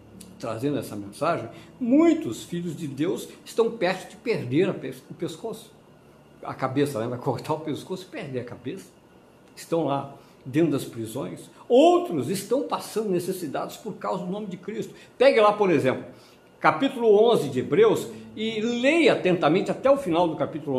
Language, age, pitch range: Portuguese, 60-79, 145-235 Hz